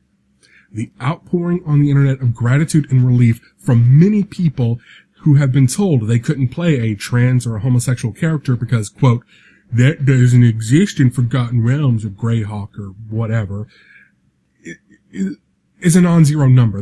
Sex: male